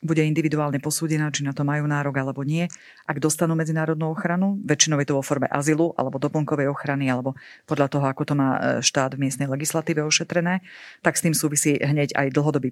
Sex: female